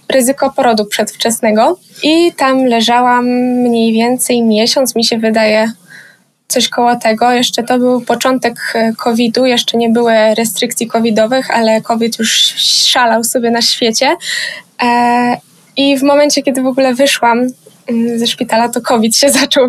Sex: female